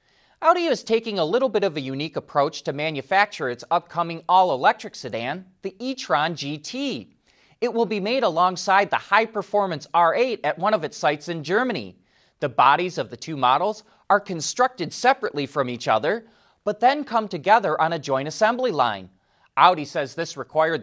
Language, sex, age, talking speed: English, male, 30-49, 170 wpm